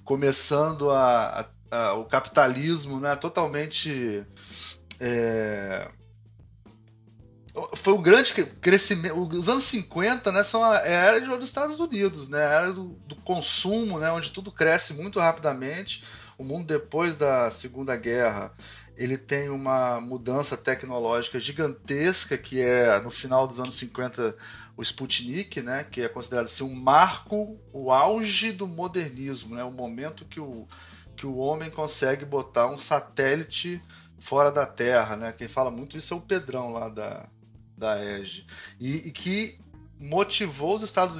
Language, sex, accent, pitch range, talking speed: Portuguese, male, Brazilian, 120-175 Hz, 145 wpm